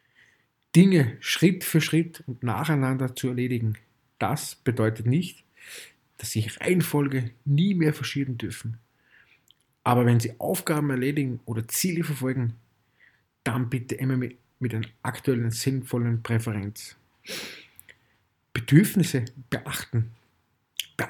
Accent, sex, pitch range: German, male, 115-140 Hz